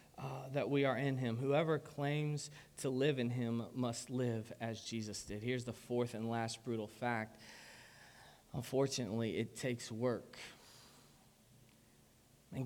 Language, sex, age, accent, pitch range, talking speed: English, male, 20-39, American, 125-150 Hz, 135 wpm